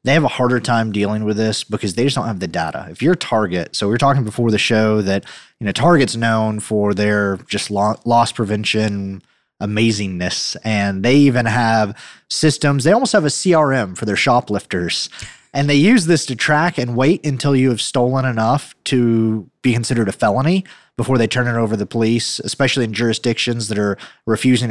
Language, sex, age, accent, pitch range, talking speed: English, male, 30-49, American, 105-130 Hz, 195 wpm